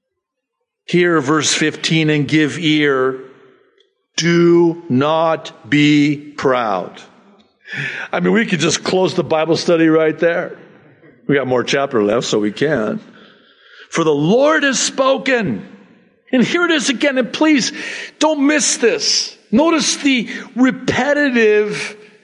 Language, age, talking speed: English, 50-69, 125 wpm